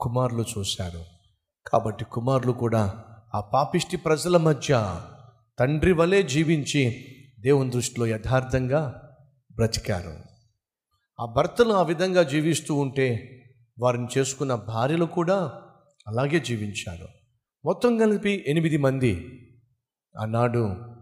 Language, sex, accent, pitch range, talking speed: Telugu, male, native, 125-190 Hz, 90 wpm